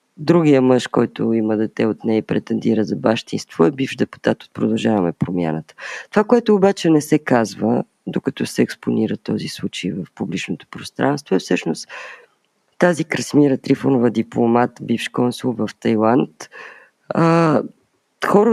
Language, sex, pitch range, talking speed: Bulgarian, female, 110-155 Hz, 135 wpm